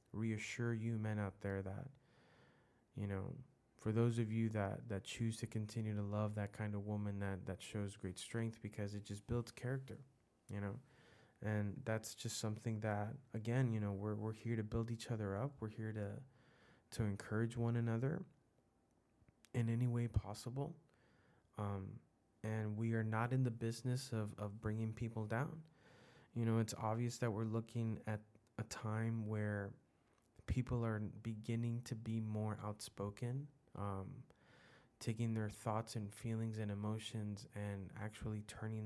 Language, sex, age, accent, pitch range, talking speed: English, male, 20-39, American, 105-120 Hz, 160 wpm